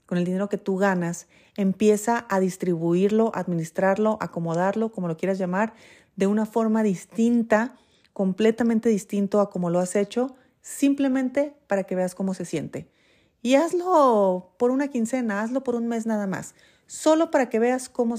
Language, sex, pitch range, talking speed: Spanish, female, 180-225 Hz, 160 wpm